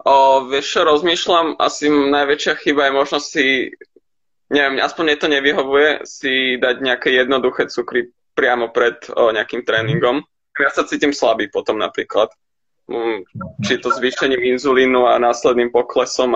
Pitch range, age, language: 125-140 Hz, 20-39, Slovak